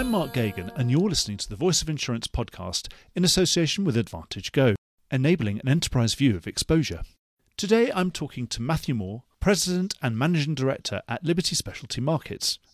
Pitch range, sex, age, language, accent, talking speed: 105-175 Hz, male, 40-59, English, British, 175 wpm